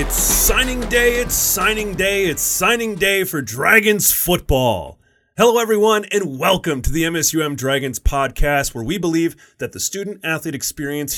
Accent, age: American, 30-49